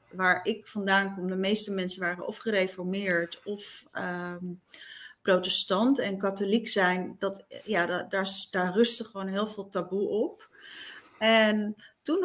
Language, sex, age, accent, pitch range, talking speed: English, female, 30-49, Dutch, 185-225 Hz, 125 wpm